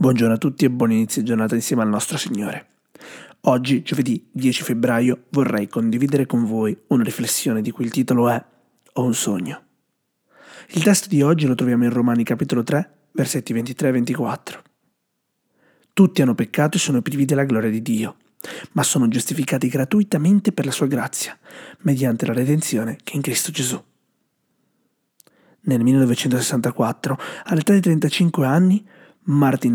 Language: Italian